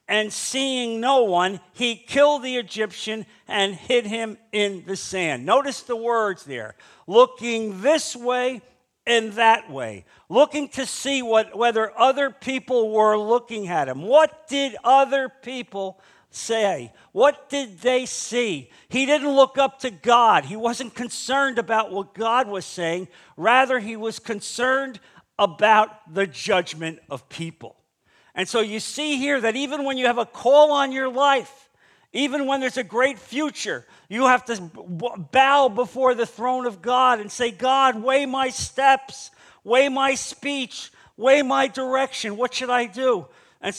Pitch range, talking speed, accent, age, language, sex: 200-265 Hz, 155 wpm, American, 50-69, English, male